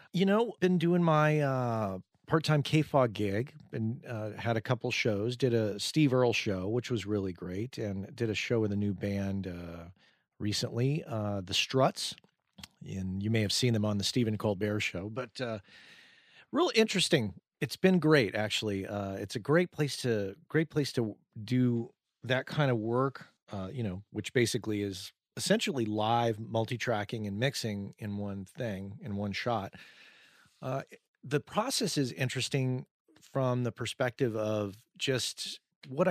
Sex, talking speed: male, 165 wpm